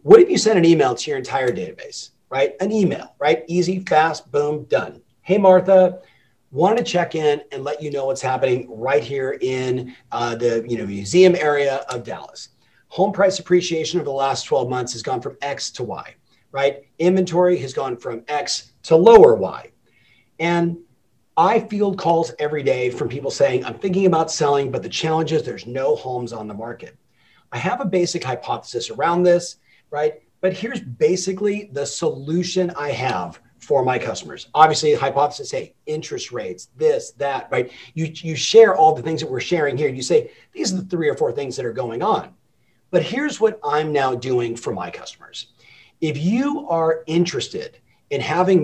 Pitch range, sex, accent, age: 135-185 Hz, male, American, 40-59